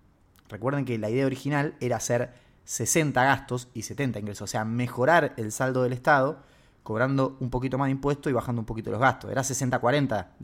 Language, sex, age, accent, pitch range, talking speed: Spanish, male, 20-39, Argentinian, 105-135 Hz, 190 wpm